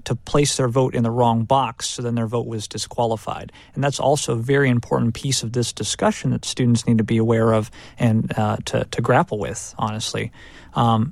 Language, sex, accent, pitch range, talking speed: English, male, American, 115-140 Hz, 210 wpm